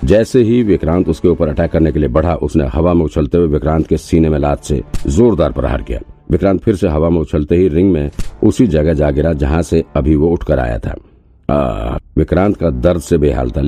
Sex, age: male, 50-69